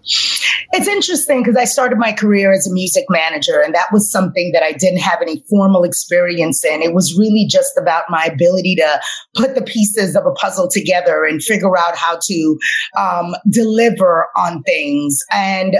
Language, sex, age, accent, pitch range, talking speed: English, female, 30-49, American, 180-240 Hz, 180 wpm